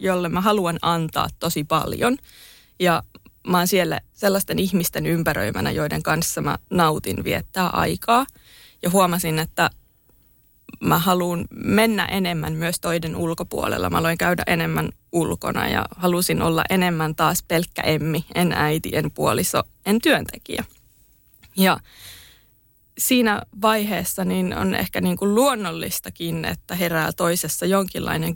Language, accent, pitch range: Finnish, native, 155-190 Hz